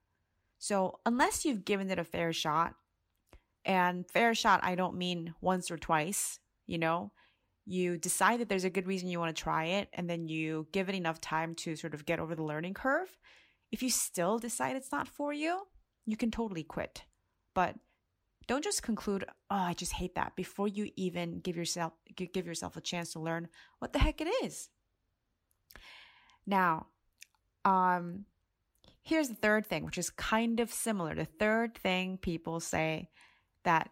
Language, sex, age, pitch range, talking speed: English, female, 30-49, 165-210 Hz, 175 wpm